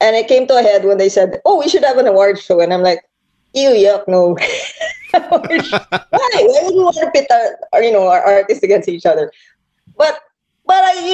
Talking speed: 220 wpm